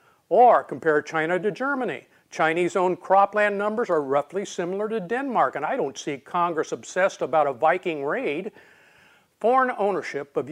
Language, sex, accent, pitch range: English, male, American, 155-200 Hz